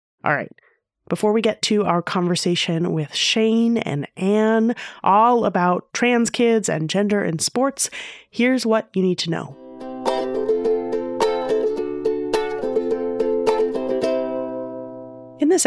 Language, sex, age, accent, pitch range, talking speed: English, female, 30-49, American, 150-200 Hz, 105 wpm